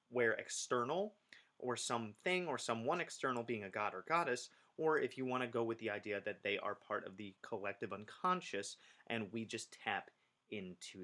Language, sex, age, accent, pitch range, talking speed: English, male, 30-49, American, 110-130 Hz, 190 wpm